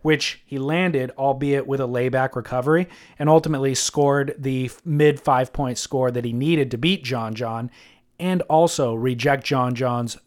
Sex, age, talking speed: male, 30-49, 165 wpm